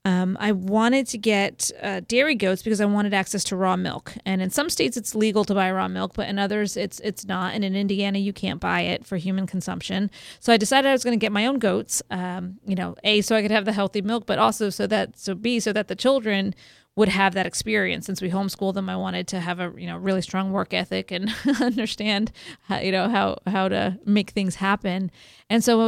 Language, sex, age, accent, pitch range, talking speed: English, female, 30-49, American, 190-220 Hz, 245 wpm